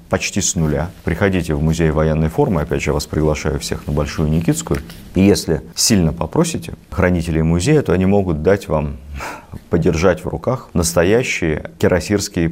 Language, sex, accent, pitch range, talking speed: Russian, male, native, 80-90 Hz, 160 wpm